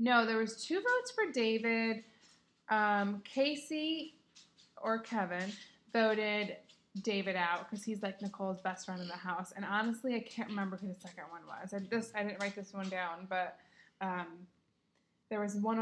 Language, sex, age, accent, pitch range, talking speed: English, female, 20-39, American, 195-230 Hz, 175 wpm